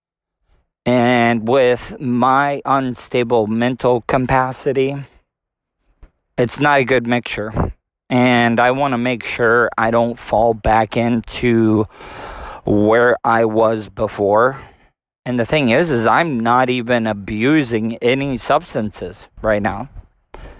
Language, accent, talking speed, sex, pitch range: English, American, 115 wpm, male, 110-130 Hz